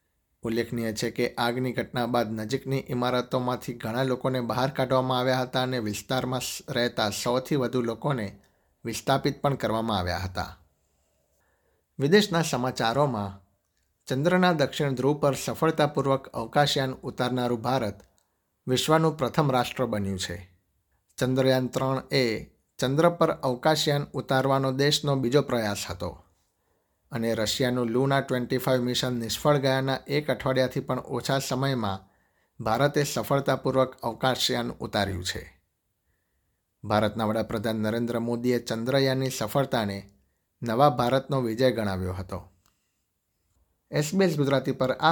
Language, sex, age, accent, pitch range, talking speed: Gujarati, male, 60-79, native, 105-135 Hz, 110 wpm